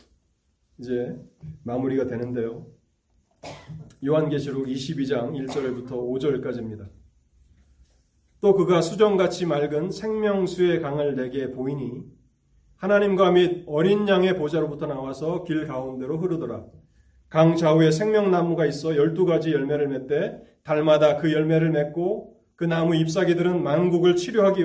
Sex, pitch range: male, 135-180 Hz